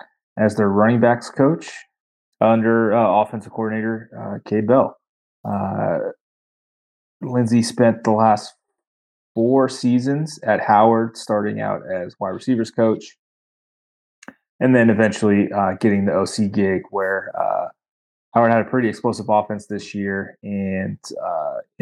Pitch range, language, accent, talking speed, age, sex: 100-115 Hz, English, American, 130 wpm, 20-39, male